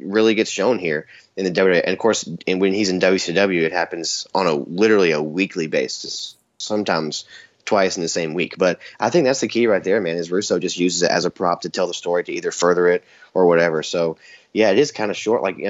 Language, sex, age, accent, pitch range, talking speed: English, male, 20-39, American, 85-100 Hz, 250 wpm